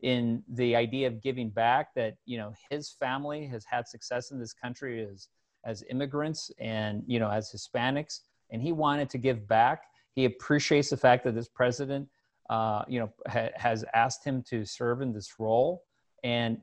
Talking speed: 185 wpm